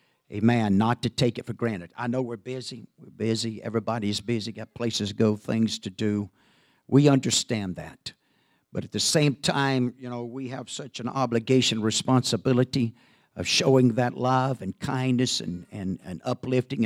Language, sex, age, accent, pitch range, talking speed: English, male, 50-69, American, 110-130 Hz, 170 wpm